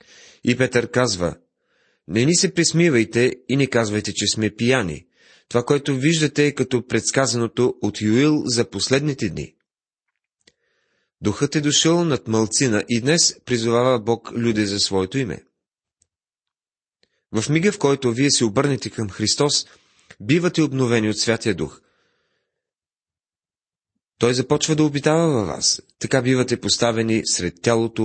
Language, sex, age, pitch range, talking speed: Bulgarian, male, 30-49, 105-140 Hz, 135 wpm